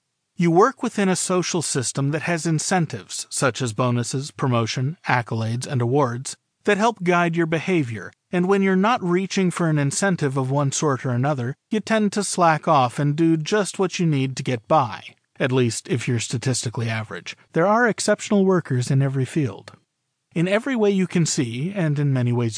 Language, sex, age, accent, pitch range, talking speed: English, male, 40-59, American, 135-190 Hz, 190 wpm